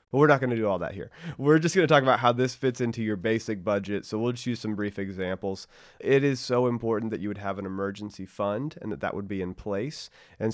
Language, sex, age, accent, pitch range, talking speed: English, male, 30-49, American, 100-120 Hz, 270 wpm